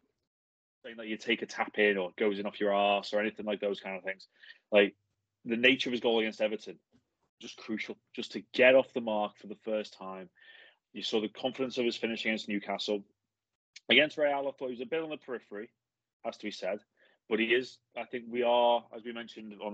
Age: 20-39